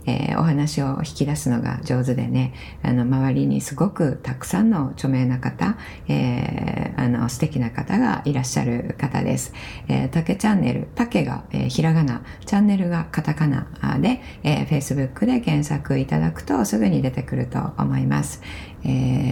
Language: Japanese